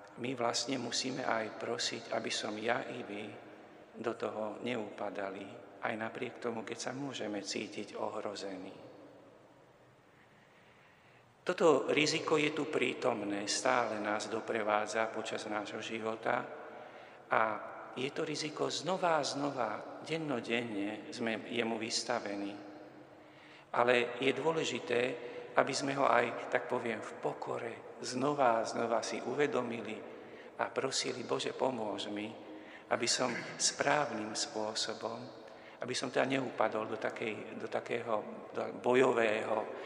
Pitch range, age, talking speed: 105-125 Hz, 50-69, 115 wpm